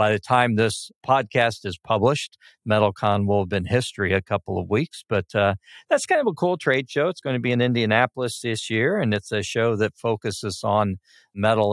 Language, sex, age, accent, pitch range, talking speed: English, male, 50-69, American, 100-130 Hz, 210 wpm